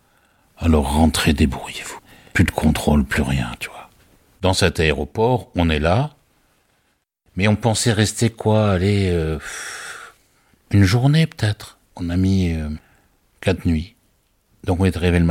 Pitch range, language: 80-105 Hz, French